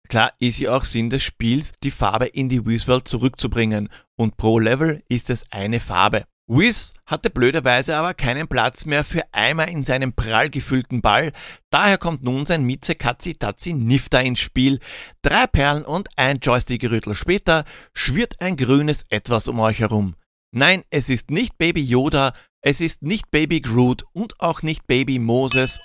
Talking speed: 170 wpm